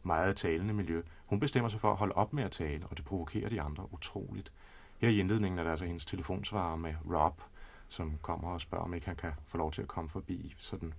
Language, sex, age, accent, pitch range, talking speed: Danish, male, 30-49, native, 85-105 Hz, 240 wpm